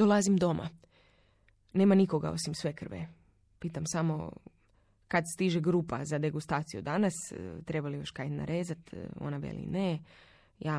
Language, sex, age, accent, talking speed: Croatian, female, 20-39, native, 135 wpm